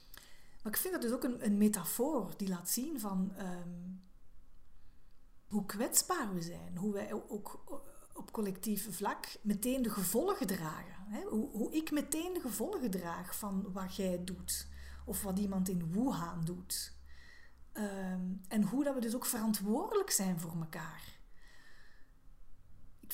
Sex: female